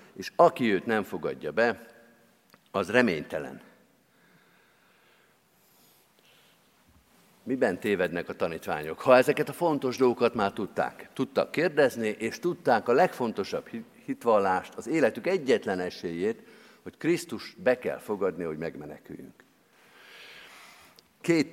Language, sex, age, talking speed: Hungarian, male, 50-69, 105 wpm